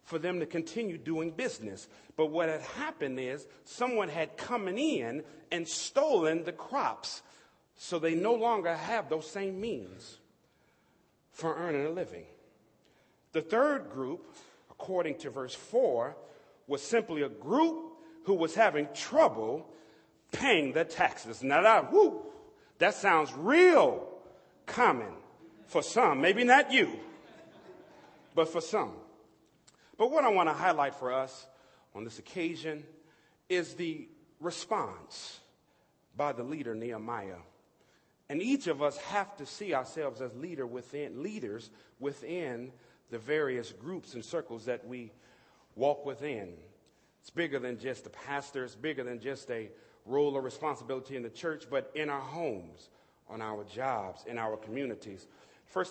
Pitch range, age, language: 130-195 Hz, 40-59, English